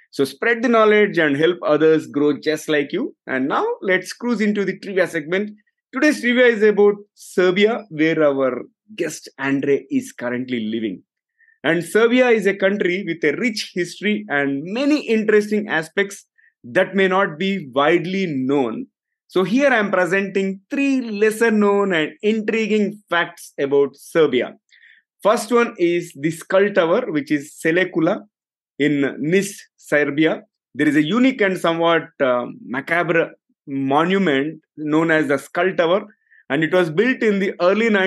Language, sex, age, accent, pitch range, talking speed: English, male, 30-49, Indian, 160-210 Hz, 150 wpm